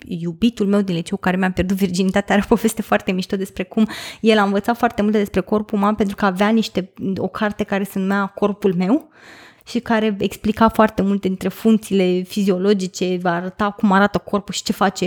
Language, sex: Romanian, female